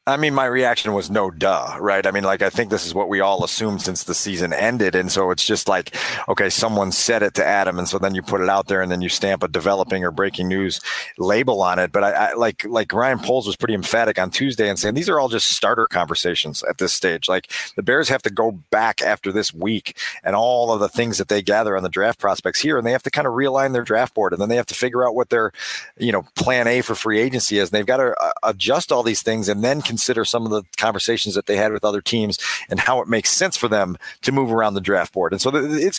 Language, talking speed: English, 275 wpm